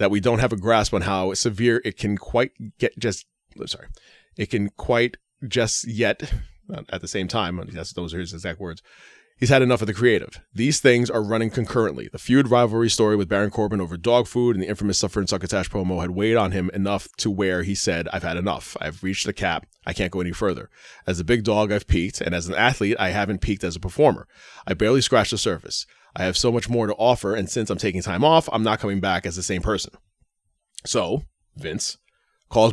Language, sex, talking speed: English, male, 225 wpm